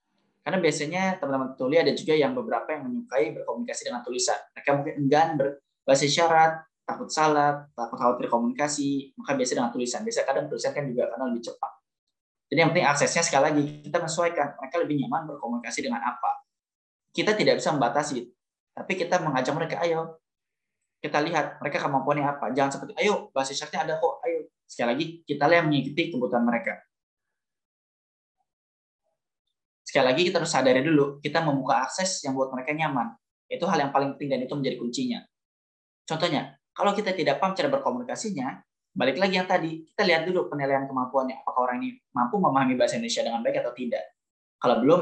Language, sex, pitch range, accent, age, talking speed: Indonesian, male, 130-170 Hz, native, 10-29, 175 wpm